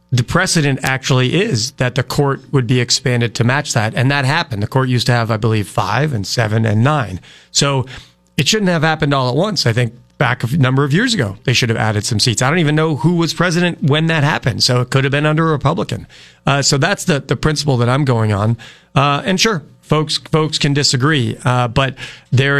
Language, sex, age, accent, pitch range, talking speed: English, male, 40-59, American, 115-145 Hz, 235 wpm